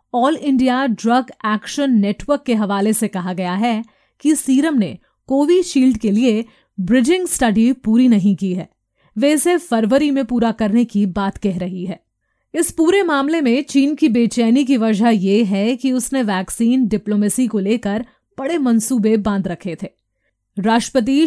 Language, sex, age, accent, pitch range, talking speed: Hindi, female, 30-49, native, 210-265 Hz, 165 wpm